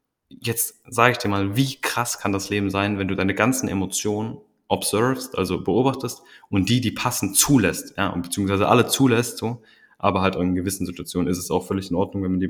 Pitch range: 90-105 Hz